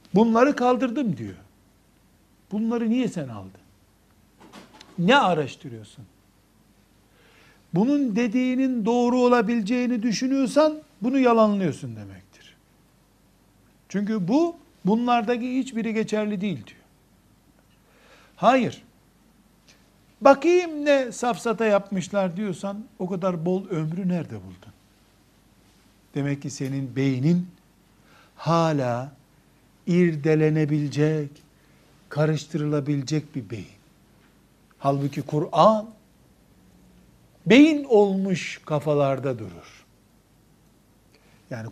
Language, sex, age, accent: Turkish, male, 60-79, native